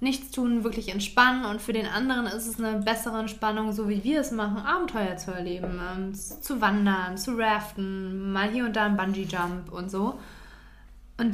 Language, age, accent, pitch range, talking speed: German, 20-39, German, 205-245 Hz, 185 wpm